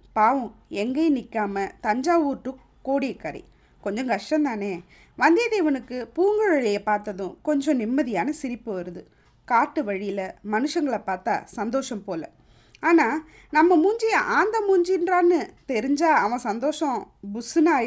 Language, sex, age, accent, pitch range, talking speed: Tamil, female, 20-39, native, 210-315 Hz, 100 wpm